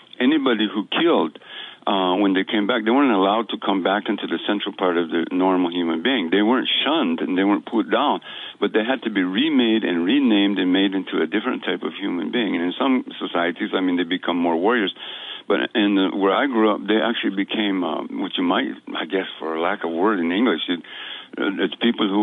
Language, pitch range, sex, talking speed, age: English, 90-105 Hz, male, 225 wpm, 60-79